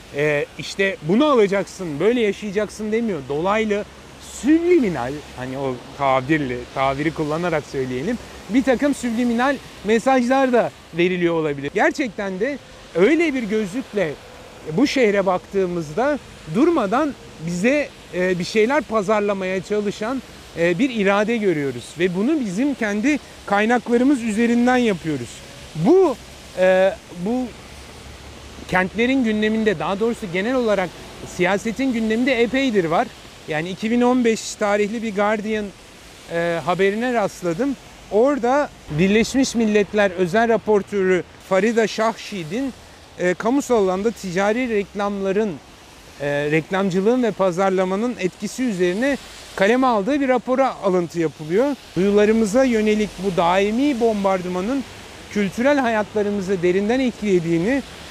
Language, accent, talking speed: Turkish, native, 100 wpm